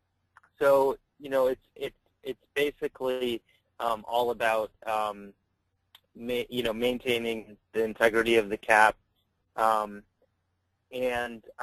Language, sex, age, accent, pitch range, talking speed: English, male, 30-49, American, 105-120 Hz, 115 wpm